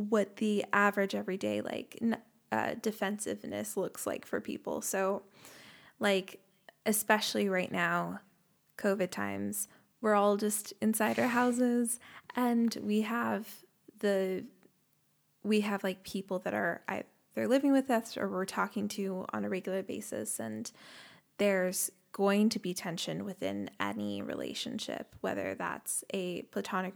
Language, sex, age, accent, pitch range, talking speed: English, female, 20-39, American, 185-215 Hz, 130 wpm